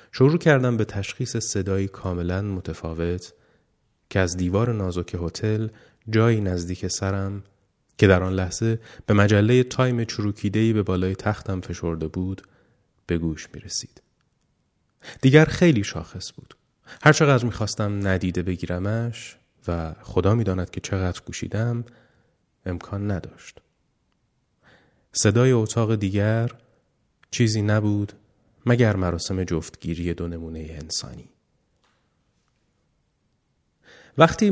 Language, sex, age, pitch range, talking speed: Persian, male, 30-49, 90-115 Hz, 105 wpm